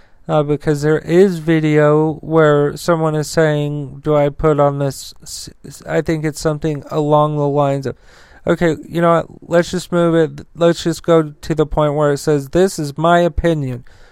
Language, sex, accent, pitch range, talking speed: English, male, American, 145-160 Hz, 185 wpm